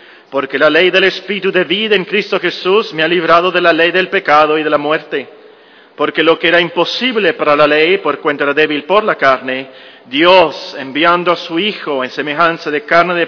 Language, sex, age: Spanish, male, 40-59